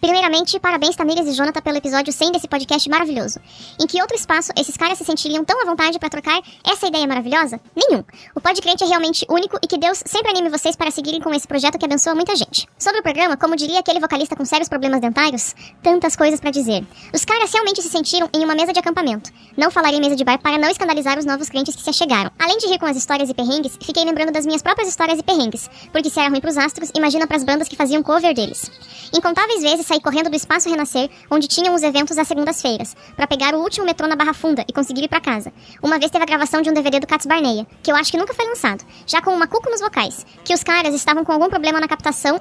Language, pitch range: Portuguese, 295-340 Hz